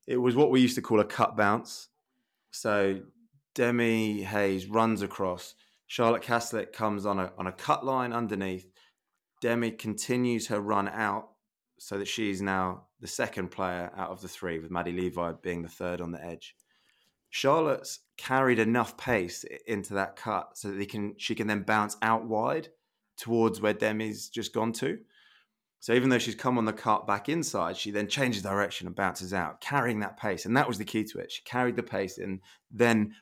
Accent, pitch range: British, 95-120 Hz